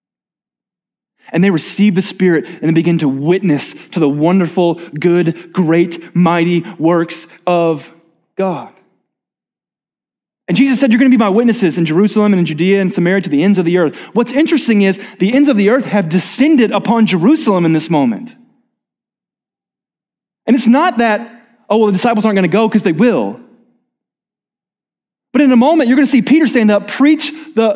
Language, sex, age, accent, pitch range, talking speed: English, male, 20-39, American, 170-245 Hz, 180 wpm